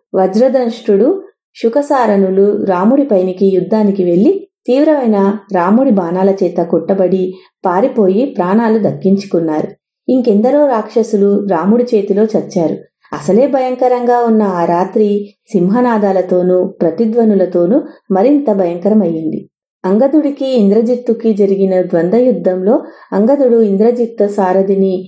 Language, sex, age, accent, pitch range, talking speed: English, female, 30-49, Indian, 190-245 Hz, 85 wpm